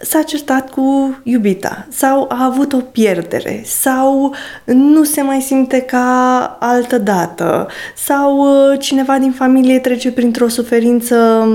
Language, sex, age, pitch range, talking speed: Romanian, female, 20-39, 205-255 Hz, 125 wpm